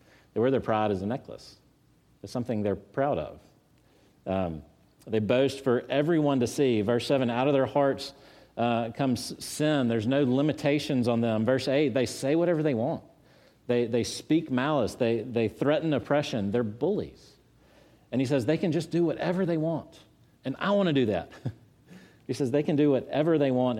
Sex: male